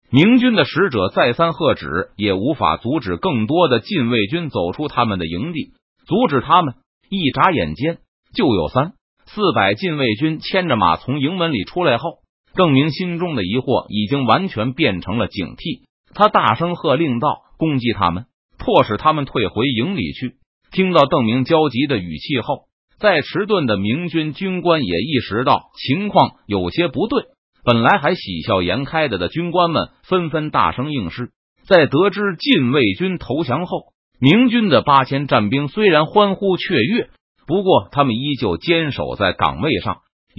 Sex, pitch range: male, 125-175 Hz